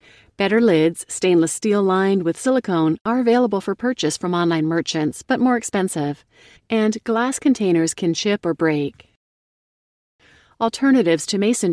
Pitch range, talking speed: 160-225 Hz, 140 wpm